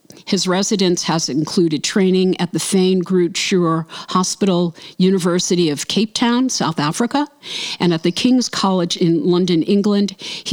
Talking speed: 150 wpm